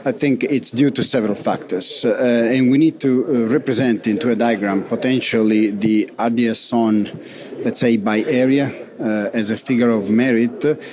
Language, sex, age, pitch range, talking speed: English, male, 40-59, 115-135 Hz, 175 wpm